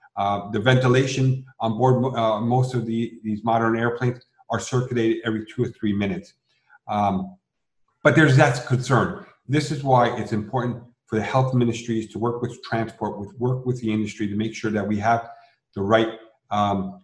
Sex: male